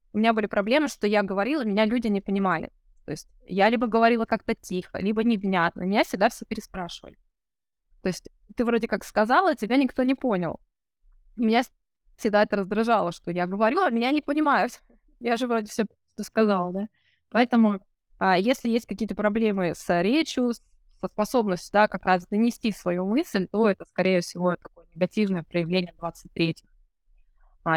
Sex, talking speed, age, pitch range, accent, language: female, 165 wpm, 20-39, 180-225 Hz, native, Russian